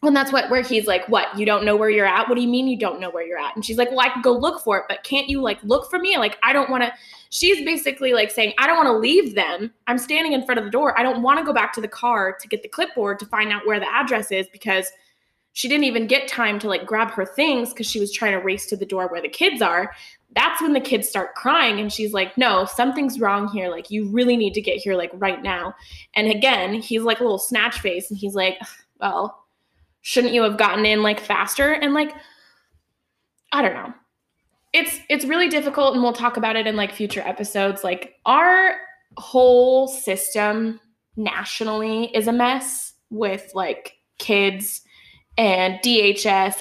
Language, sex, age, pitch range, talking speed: English, female, 20-39, 200-260 Hz, 235 wpm